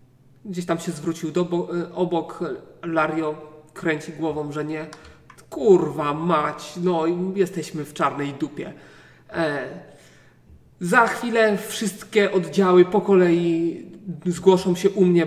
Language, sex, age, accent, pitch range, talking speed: Polish, male, 30-49, native, 165-195 Hz, 110 wpm